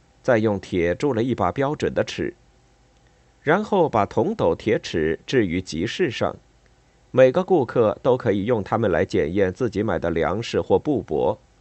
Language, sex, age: Chinese, male, 50-69